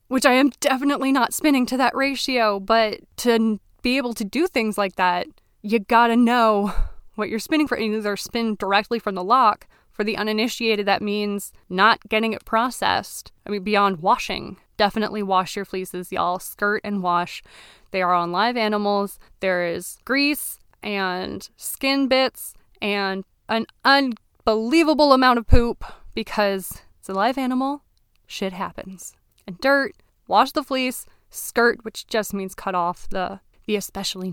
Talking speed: 155 wpm